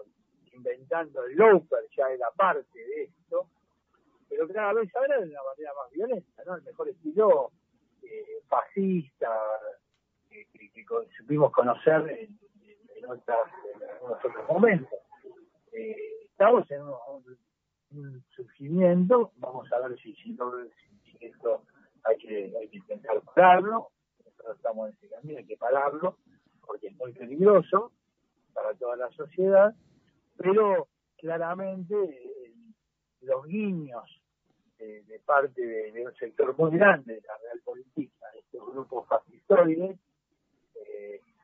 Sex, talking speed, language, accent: male, 135 wpm, Spanish, Argentinian